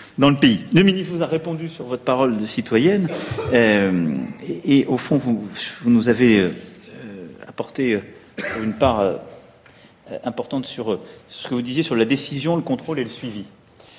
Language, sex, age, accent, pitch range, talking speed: French, male, 40-59, French, 120-155 Hz, 185 wpm